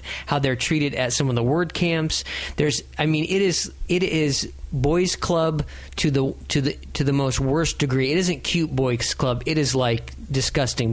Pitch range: 125-155 Hz